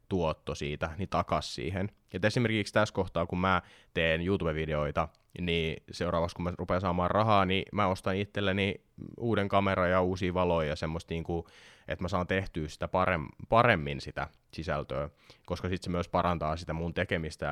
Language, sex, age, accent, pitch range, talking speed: Finnish, male, 20-39, native, 80-95 Hz, 160 wpm